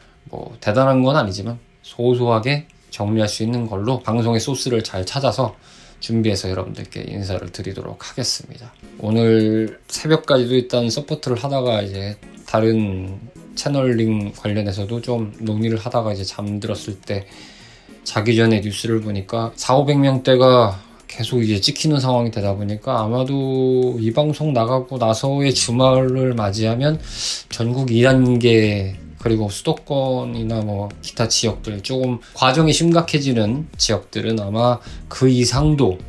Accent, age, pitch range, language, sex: native, 20-39, 105-130 Hz, Korean, male